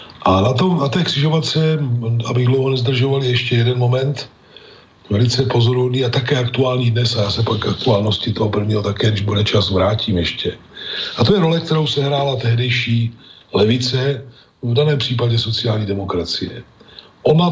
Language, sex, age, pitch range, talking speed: Slovak, male, 40-59, 105-130 Hz, 155 wpm